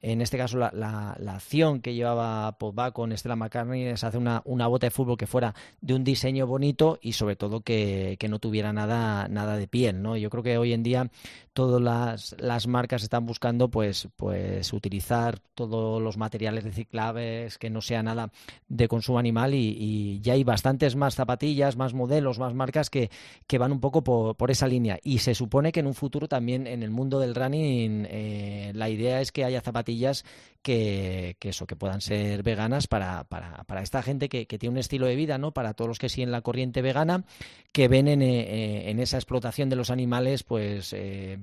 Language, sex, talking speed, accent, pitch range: Spanish, male, 210 wpm, Spanish, 110-130 Hz